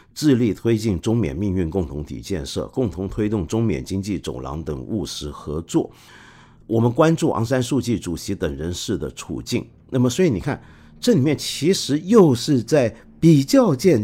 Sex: male